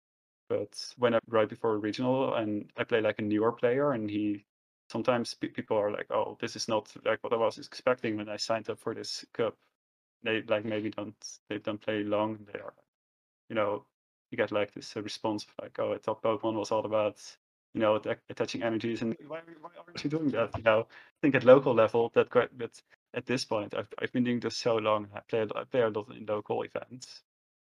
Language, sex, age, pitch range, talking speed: English, male, 20-39, 105-125 Hz, 220 wpm